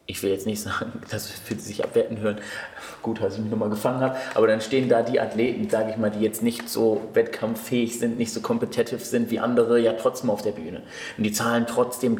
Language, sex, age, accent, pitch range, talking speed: German, male, 30-49, German, 115-130 Hz, 230 wpm